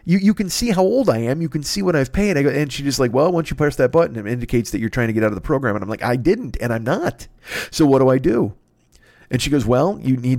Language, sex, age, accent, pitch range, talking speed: English, male, 40-59, American, 100-130 Hz, 325 wpm